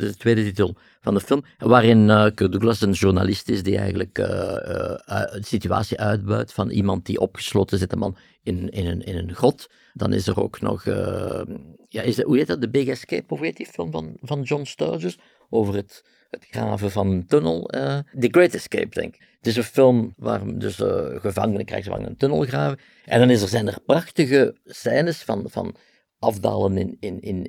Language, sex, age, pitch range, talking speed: Dutch, male, 50-69, 100-120 Hz, 205 wpm